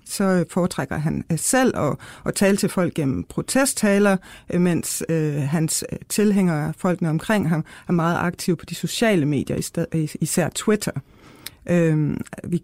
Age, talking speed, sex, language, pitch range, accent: 60-79, 130 wpm, female, Danish, 165-195 Hz, native